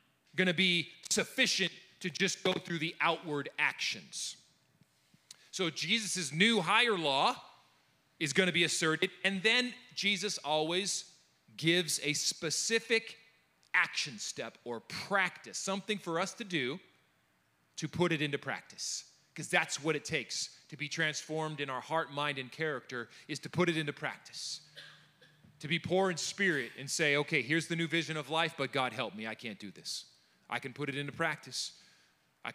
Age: 30-49